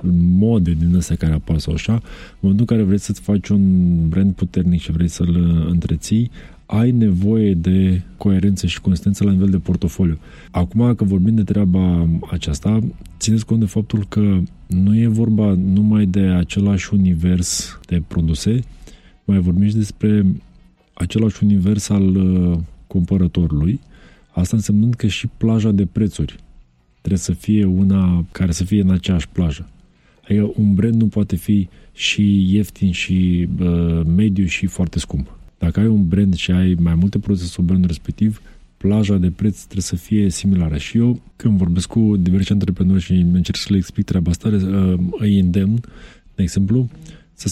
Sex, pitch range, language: male, 90-105 Hz, Romanian